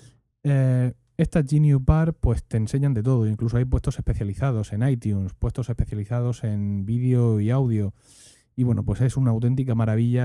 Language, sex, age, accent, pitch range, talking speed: Spanish, male, 30-49, Spanish, 110-130 Hz, 165 wpm